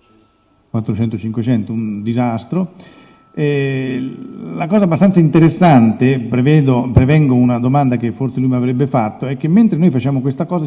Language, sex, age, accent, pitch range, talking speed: Italian, male, 50-69, native, 120-150 Hz, 140 wpm